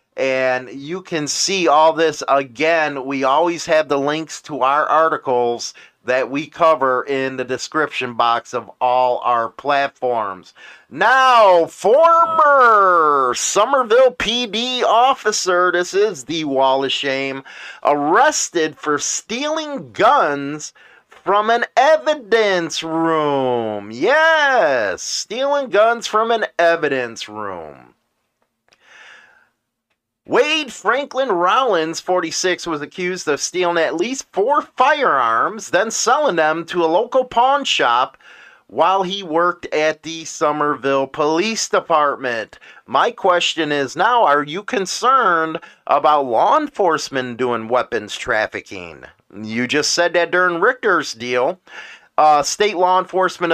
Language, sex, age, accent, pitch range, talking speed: English, male, 30-49, American, 135-200 Hz, 115 wpm